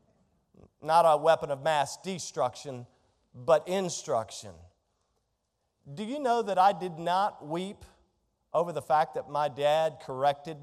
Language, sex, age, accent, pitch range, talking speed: English, male, 40-59, American, 115-175 Hz, 130 wpm